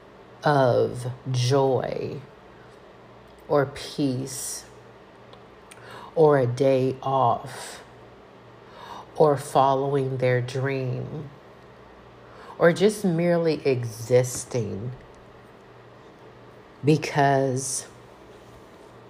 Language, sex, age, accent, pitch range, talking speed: English, female, 50-69, American, 125-145 Hz, 55 wpm